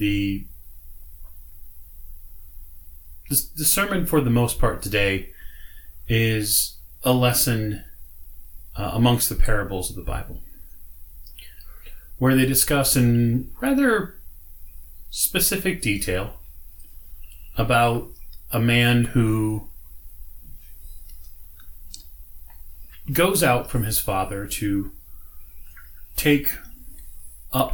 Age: 30-49